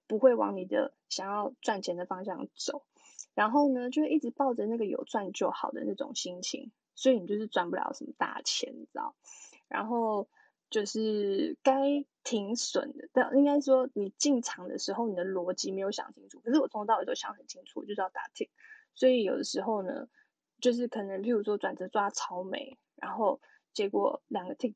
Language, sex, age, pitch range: Chinese, female, 10-29, 200-275 Hz